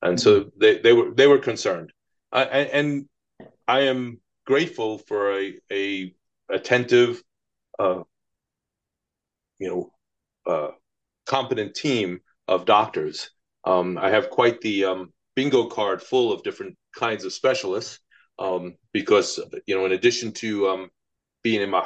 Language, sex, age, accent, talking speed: English, male, 30-49, American, 135 wpm